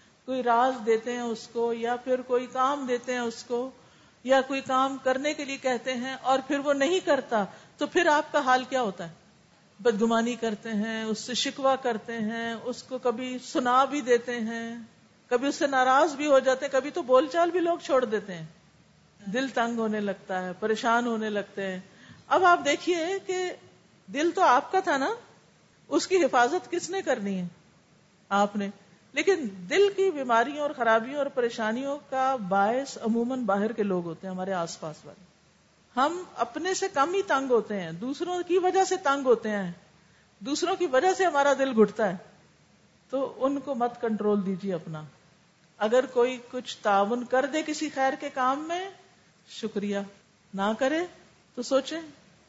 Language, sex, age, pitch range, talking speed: Urdu, female, 50-69, 215-285 Hz, 185 wpm